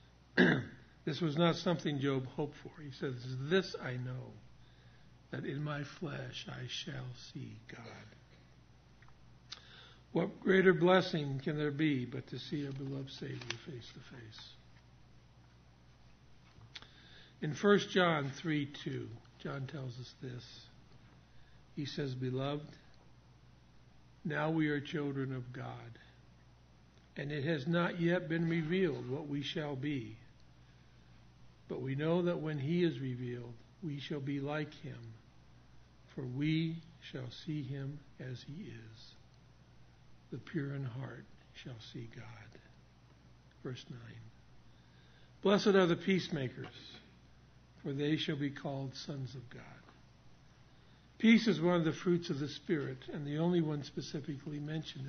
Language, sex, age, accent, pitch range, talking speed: English, male, 60-79, American, 120-155 Hz, 130 wpm